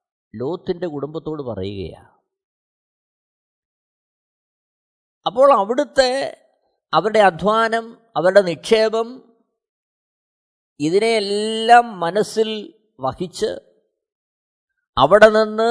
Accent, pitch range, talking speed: native, 150-245 Hz, 55 wpm